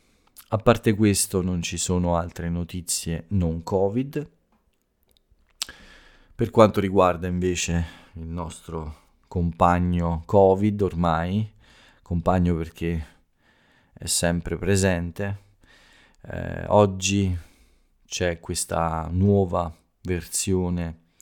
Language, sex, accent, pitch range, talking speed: Italian, male, native, 85-100 Hz, 85 wpm